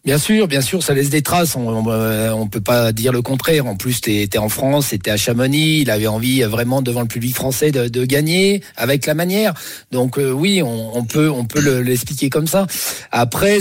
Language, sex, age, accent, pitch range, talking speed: French, male, 50-69, French, 125-160 Hz, 220 wpm